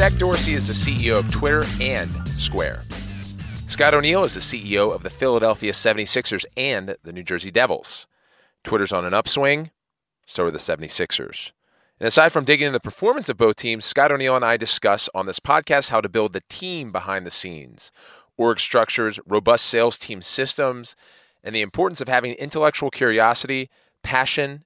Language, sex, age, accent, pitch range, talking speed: English, male, 30-49, American, 105-145 Hz, 175 wpm